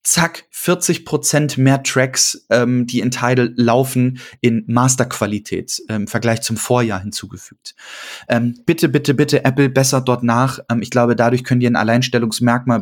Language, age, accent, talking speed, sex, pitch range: German, 20-39, German, 160 wpm, male, 115-130 Hz